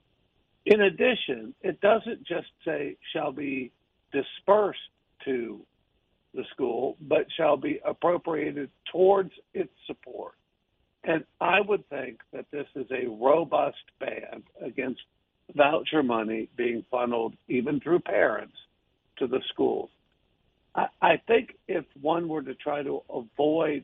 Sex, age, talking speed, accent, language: male, 60-79, 125 wpm, American, English